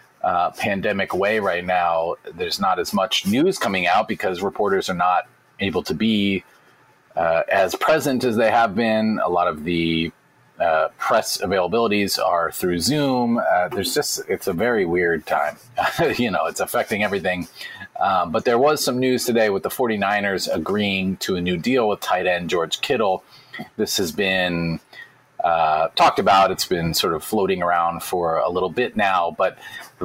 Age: 30-49